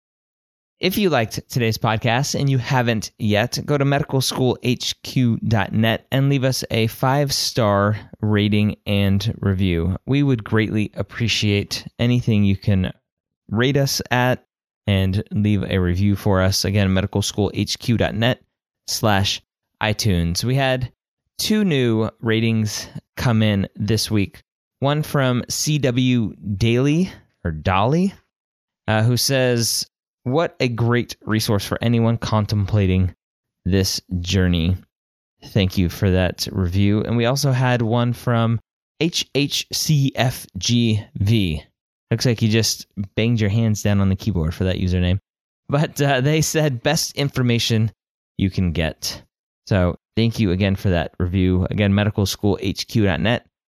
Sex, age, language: male, 20-39, English